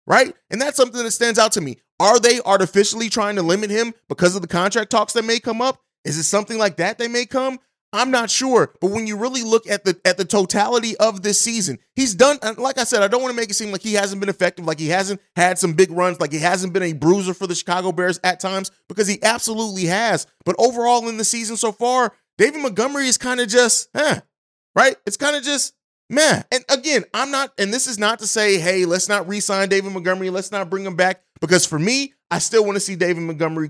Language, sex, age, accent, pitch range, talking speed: English, male, 30-49, American, 185-230 Hz, 250 wpm